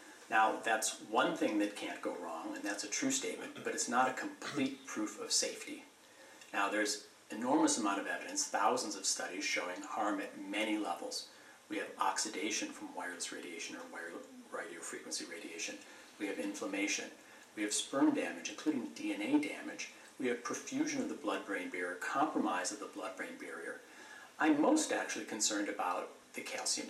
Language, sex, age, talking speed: English, male, 40-59, 165 wpm